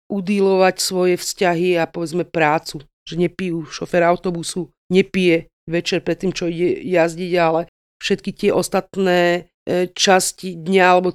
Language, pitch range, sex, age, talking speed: Slovak, 180-210 Hz, female, 40-59, 130 wpm